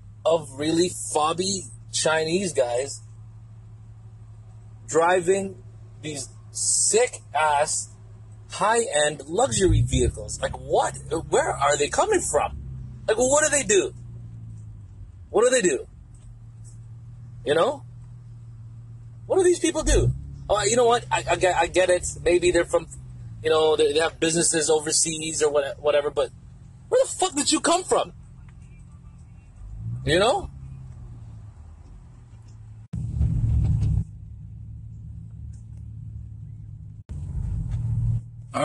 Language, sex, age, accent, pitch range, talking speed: English, male, 30-49, American, 110-160 Hz, 105 wpm